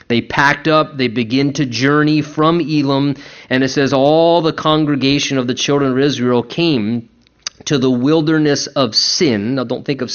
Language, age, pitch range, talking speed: English, 30-49, 125-155 Hz, 175 wpm